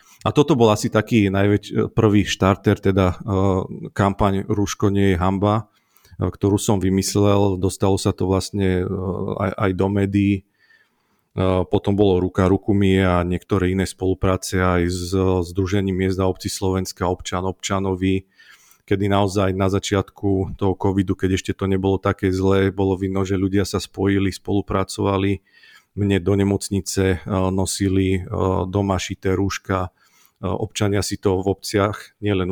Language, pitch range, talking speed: Slovak, 95-100 Hz, 150 wpm